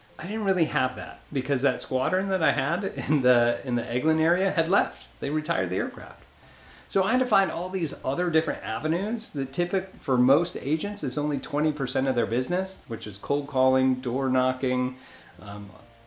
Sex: male